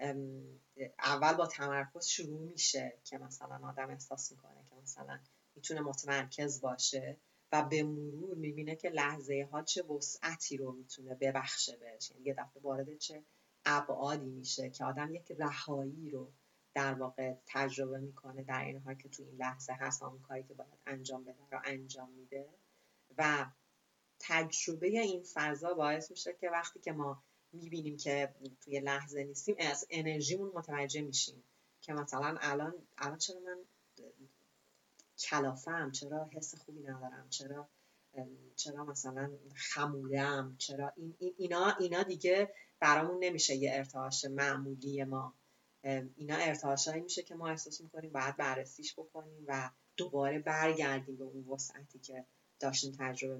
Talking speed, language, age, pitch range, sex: 135 wpm, English, 30-49, 135-155 Hz, female